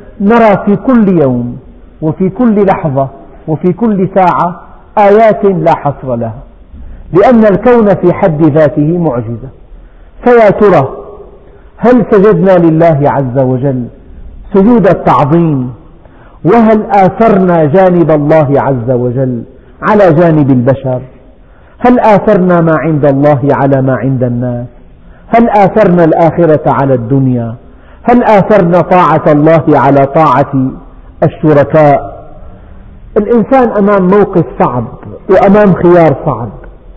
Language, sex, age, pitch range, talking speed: Arabic, male, 50-69, 140-200 Hz, 105 wpm